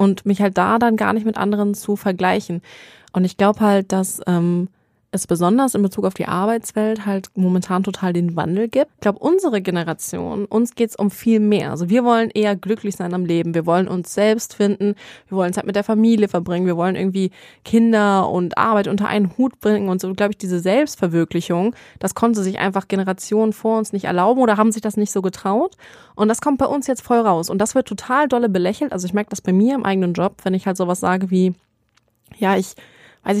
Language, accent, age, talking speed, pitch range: German, German, 20-39, 220 wpm, 190-220 Hz